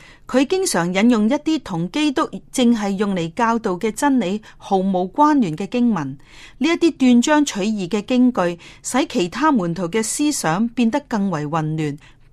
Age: 30-49